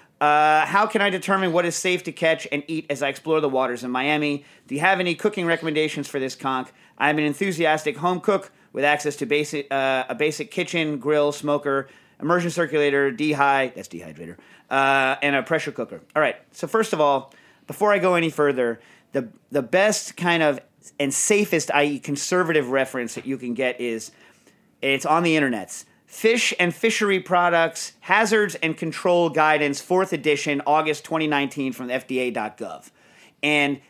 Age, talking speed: 30-49, 170 wpm